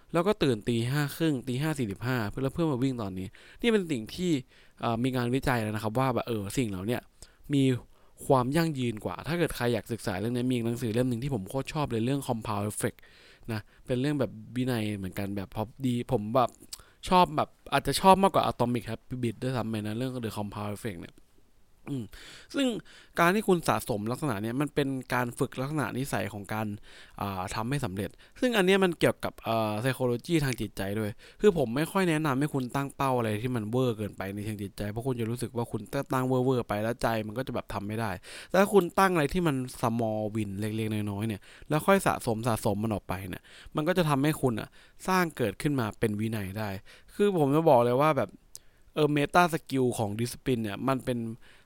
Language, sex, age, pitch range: English, male, 20-39, 110-140 Hz